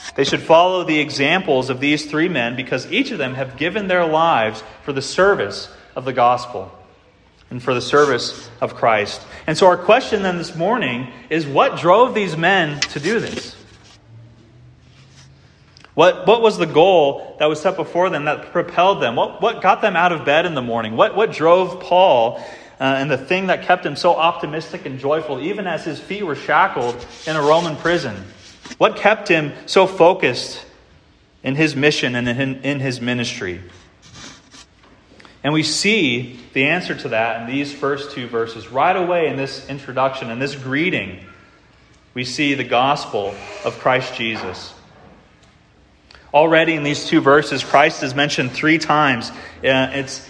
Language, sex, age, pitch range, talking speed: English, male, 30-49, 125-165 Hz, 170 wpm